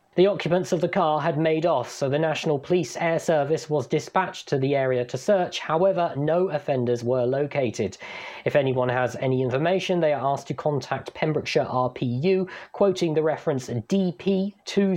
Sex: male